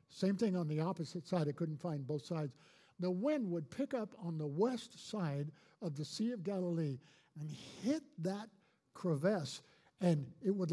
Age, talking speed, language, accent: 50-69, 180 wpm, English, American